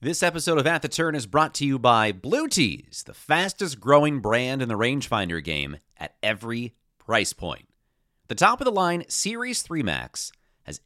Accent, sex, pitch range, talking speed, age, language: American, male, 105-155 Hz, 170 wpm, 40-59, English